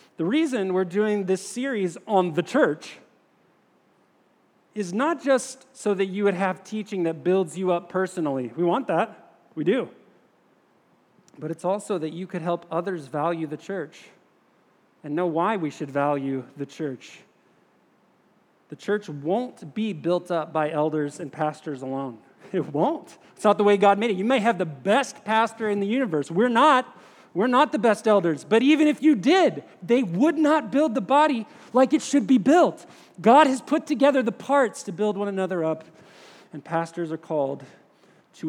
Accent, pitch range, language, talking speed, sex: American, 165-235 Hz, English, 180 wpm, male